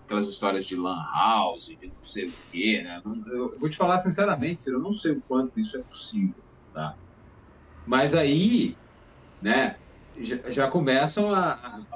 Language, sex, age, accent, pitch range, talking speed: Portuguese, male, 40-59, Brazilian, 130-205 Hz, 165 wpm